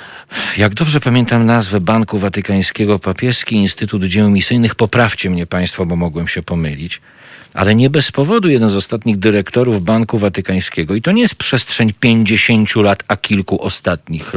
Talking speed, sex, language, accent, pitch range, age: 155 wpm, male, Polish, native, 100-120 Hz, 40-59